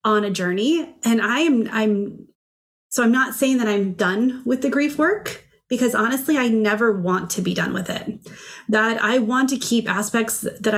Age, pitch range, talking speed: 30-49, 200-240 Hz, 195 wpm